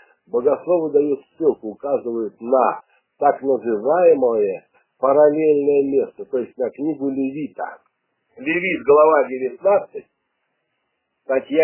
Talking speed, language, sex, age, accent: 90 wpm, Russian, male, 50-69, native